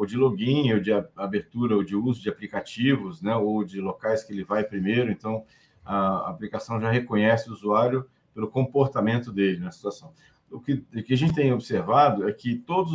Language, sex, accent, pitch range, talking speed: Portuguese, male, Brazilian, 105-135 Hz, 190 wpm